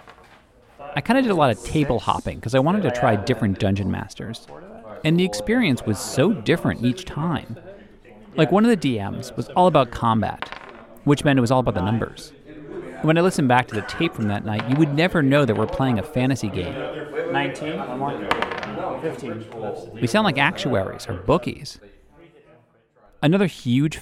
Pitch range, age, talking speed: 110-150 Hz, 40-59, 175 wpm